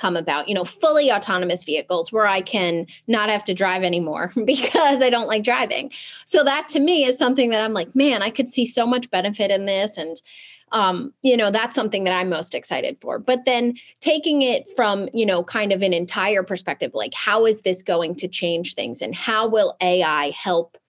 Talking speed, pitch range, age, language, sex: 215 wpm, 190-245 Hz, 20-39, Hungarian, female